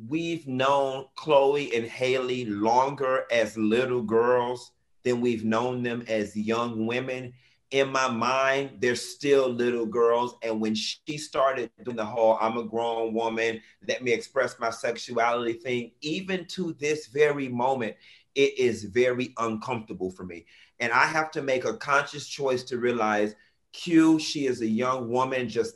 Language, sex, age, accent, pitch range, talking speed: English, male, 30-49, American, 115-150 Hz, 160 wpm